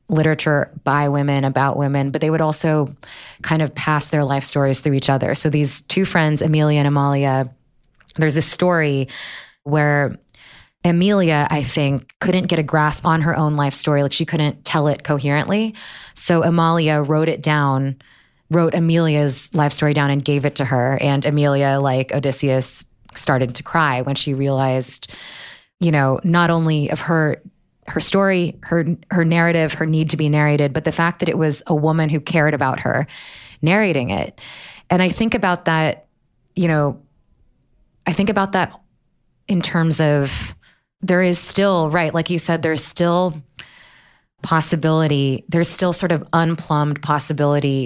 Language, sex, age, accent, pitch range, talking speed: English, female, 20-39, American, 140-165 Hz, 165 wpm